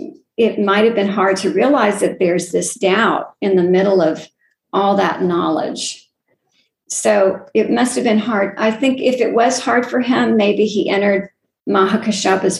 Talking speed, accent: 170 wpm, American